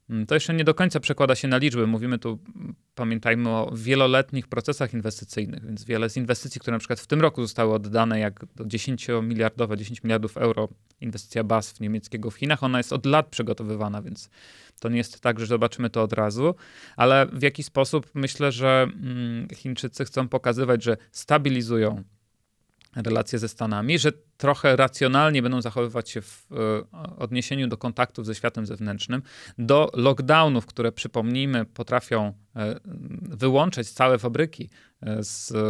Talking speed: 155 wpm